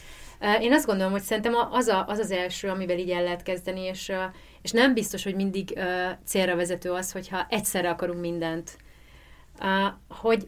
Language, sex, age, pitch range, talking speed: Hungarian, female, 30-49, 175-200 Hz, 165 wpm